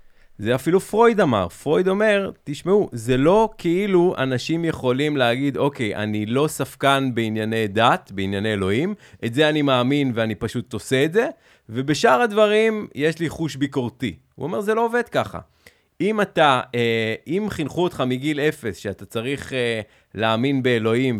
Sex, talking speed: male, 150 wpm